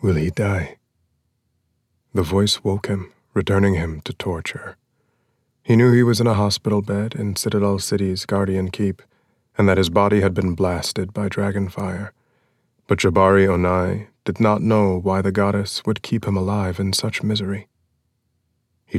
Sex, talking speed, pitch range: male, 160 wpm, 90-110 Hz